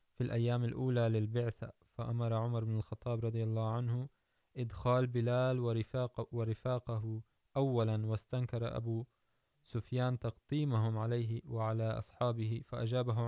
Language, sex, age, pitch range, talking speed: Urdu, male, 20-39, 110-125 Hz, 110 wpm